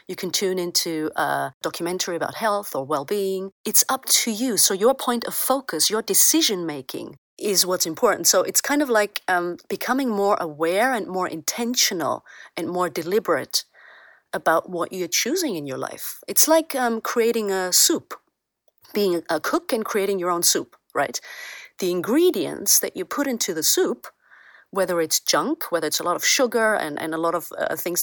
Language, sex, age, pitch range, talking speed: English, female, 30-49, 175-230 Hz, 180 wpm